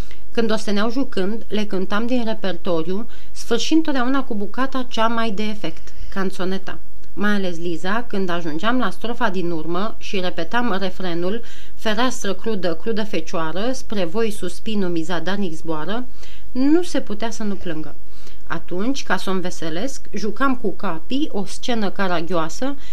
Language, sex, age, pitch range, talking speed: Romanian, female, 40-59, 185-235 Hz, 145 wpm